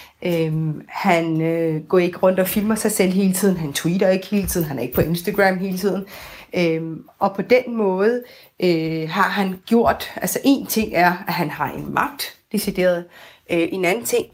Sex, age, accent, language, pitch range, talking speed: female, 30-49, native, Danish, 170-215 Hz, 195 wpm